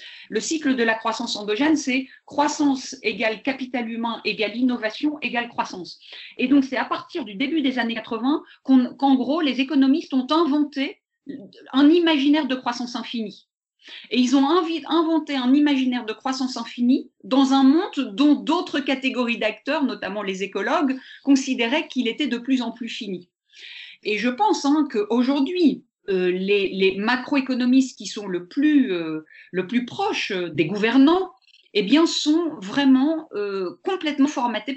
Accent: French